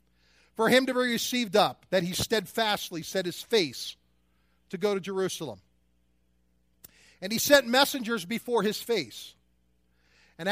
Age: 50-69